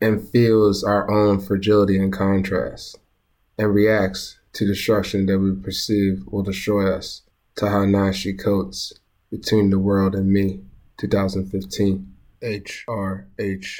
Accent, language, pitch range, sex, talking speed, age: American, English, 95-100 Hz, male, 125 wpm, 20-39